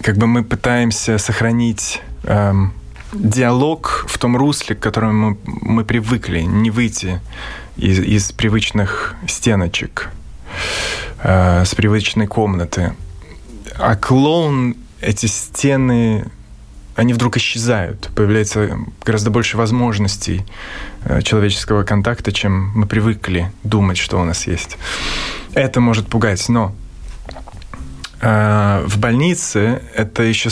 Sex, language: male, Russian